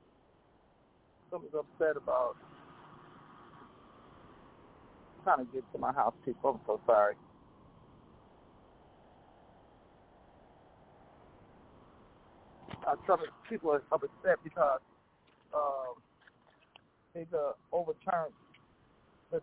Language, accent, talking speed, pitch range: English, American, 75 wpm, 160-205 Hz